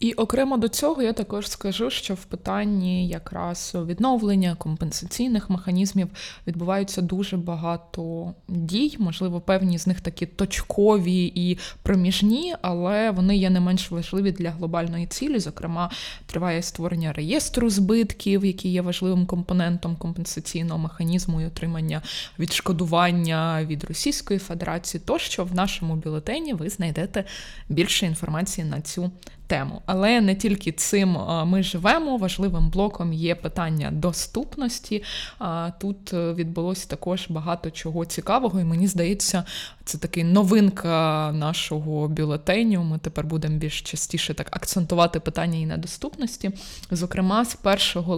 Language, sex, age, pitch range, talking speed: Ukrainian, female, 20-39, 170-195 Hz, 125 wpm